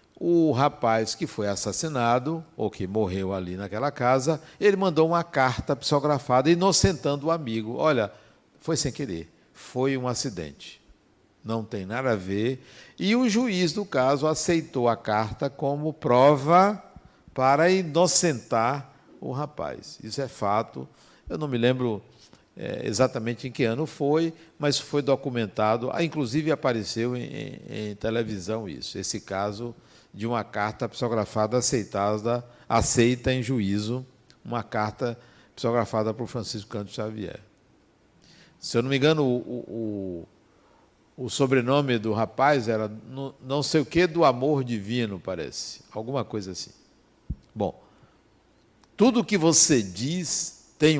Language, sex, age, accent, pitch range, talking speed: Portuguese, male, 60-79, Brazilian, 110-150 Hz, 130 wpm